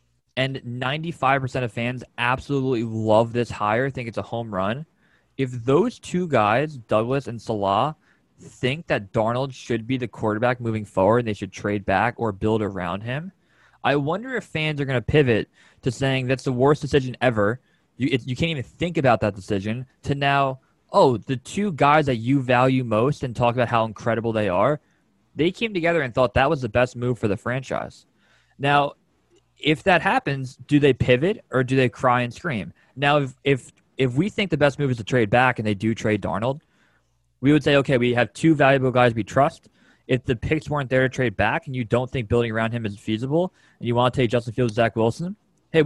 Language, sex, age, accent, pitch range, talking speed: English, male, 20-39, American, 115-145 Hz, 210 wpm